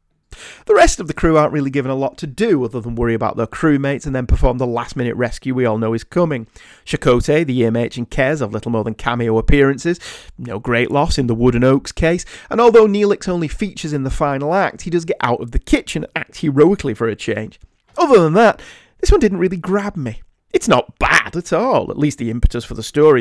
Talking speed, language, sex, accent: 240 wpm, English, male, British